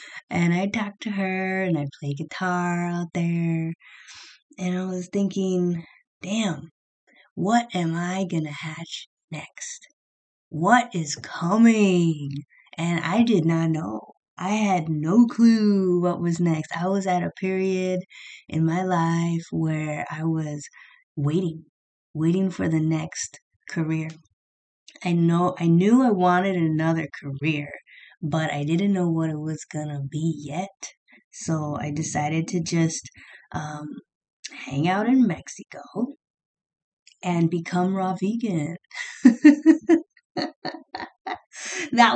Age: 20-39